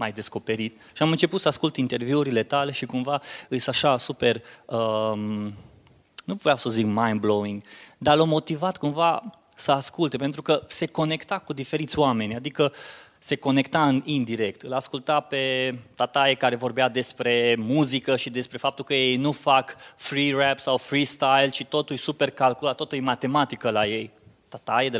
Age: 20-39